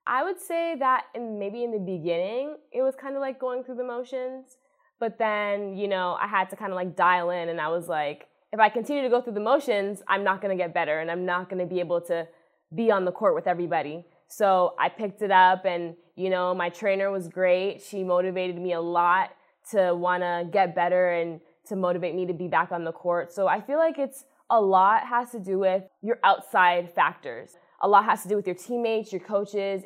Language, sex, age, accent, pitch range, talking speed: English, female, 20-39, American, 180-215 Hz, 235 wpm